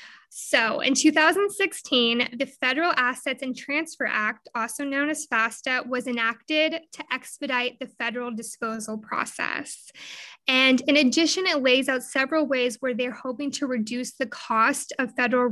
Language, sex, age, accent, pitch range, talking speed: English, female, 20-39, American, 240-290 Hz, 145 wpm